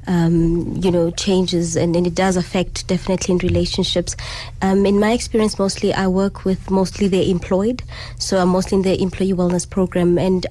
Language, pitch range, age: English, 180-205 Hz, 20-39